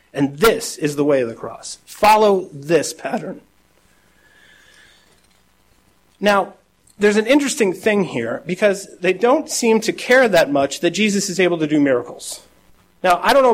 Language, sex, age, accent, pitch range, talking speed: English, male, 40-59, American, 155-210 Hz, 160 wpm